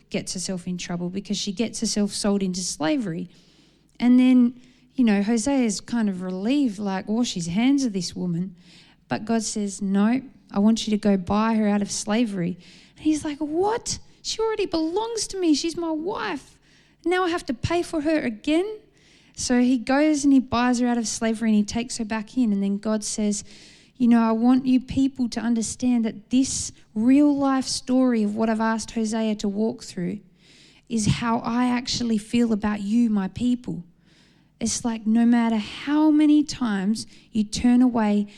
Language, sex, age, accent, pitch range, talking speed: English, female, 20-39, Australian, 205-255 Hz, 190 wpm